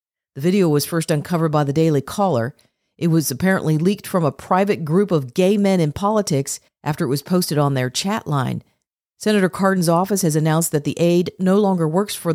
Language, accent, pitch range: English, American, 160-195 Hz